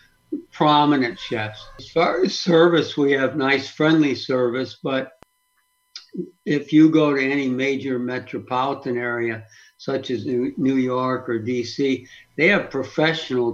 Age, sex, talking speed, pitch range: 60-79, male, 130 wpm, 120-140 Hz